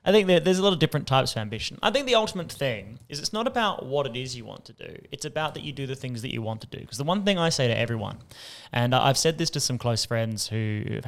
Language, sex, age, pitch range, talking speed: English, male, 10-29, 115-155 Hz, 305 wpm